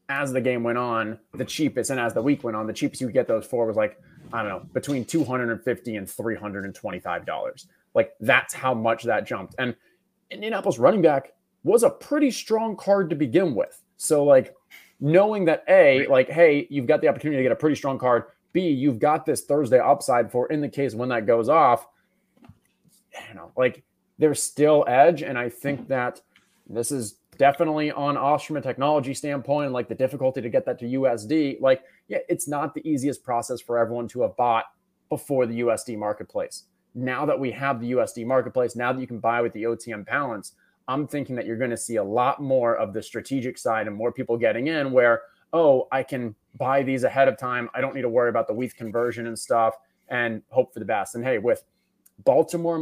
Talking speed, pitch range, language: 210 wpm, 120-150 Hz, English